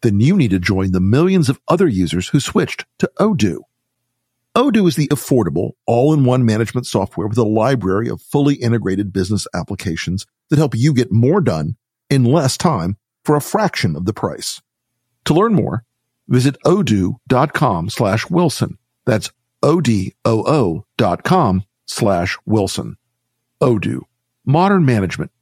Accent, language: American, English